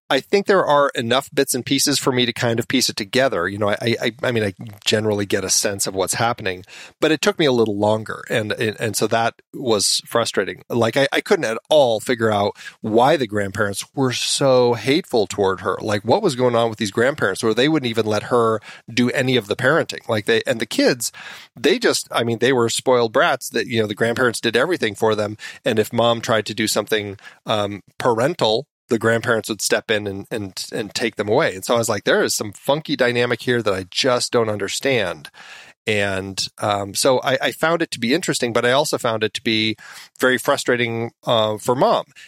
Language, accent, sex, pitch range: English, American, male, 110-130 Hz